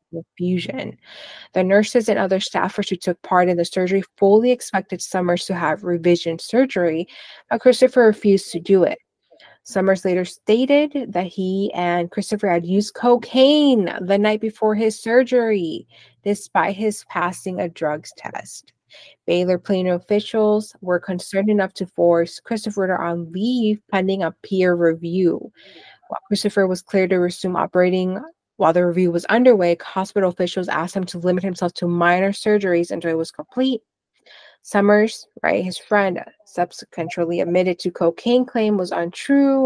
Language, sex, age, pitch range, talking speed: English, female, 20-39, 175-210 Hz, 150 wpm